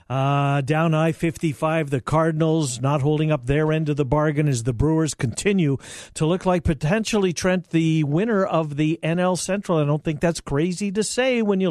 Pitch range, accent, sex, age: 135-165 Hz, American, male, 50-69